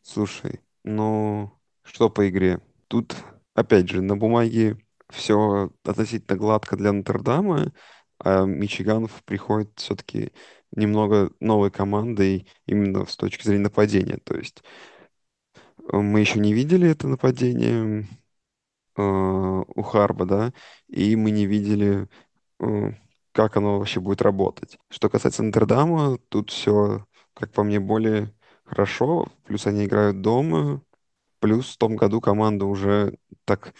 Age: 20-39